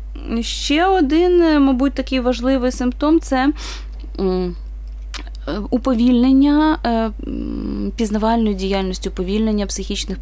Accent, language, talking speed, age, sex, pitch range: native, Ukrainian, 75 wpm, 20-39, female, 195-250 Hz